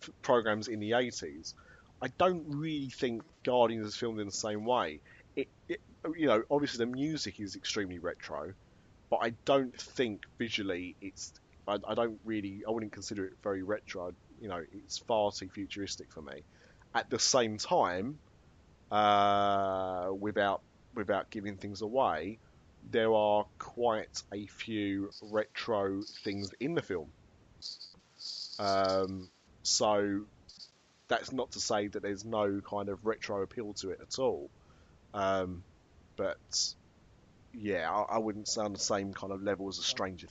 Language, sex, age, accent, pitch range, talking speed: English, male, 30-49, British, 90-110 Hz, 150 wpm